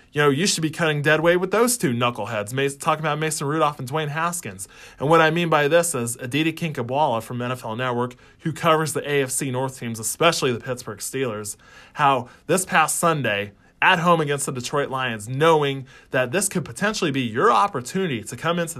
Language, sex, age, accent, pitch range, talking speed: English, male, 20-39, American, 120-155 Hz, 200 wpm